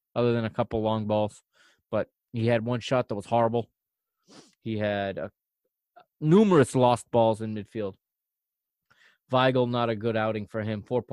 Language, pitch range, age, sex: English, 110-140 Hz, 20-39, male